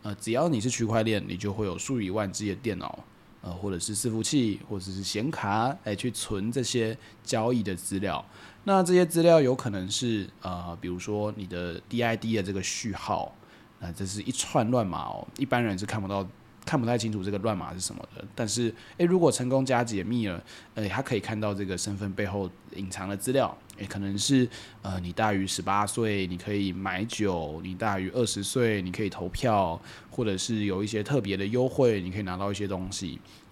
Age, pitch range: 20-39, 95-125 Hz